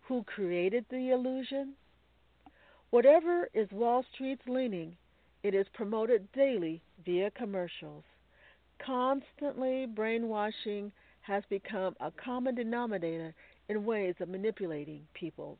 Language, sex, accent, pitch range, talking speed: English, female, American, 180-265 Hz, 105 wpm